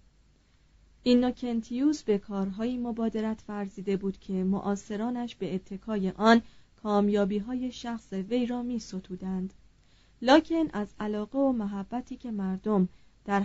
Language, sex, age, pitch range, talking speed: Persian, female, 30-49, 195-245 Hz, 120 wpm